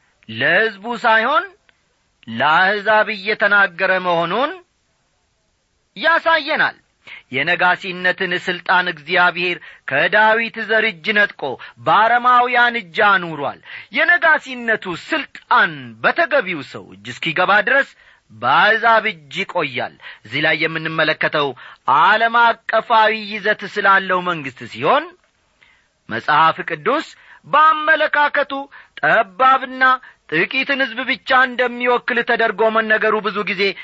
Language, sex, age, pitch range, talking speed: Amharic, male, 40-59, 170-245 Hz, 80 wpm